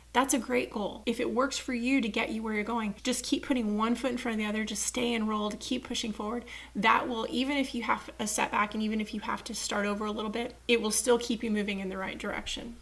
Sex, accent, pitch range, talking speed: female, American, 210-250 Hz, 280 wpm